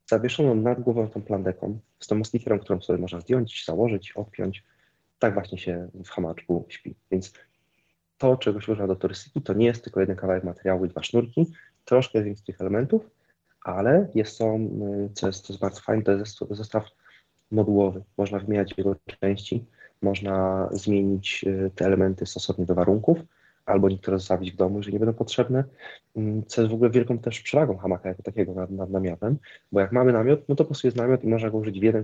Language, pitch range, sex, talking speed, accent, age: Polish, 95-115 Hz, male, 195 wpm, native, 30-49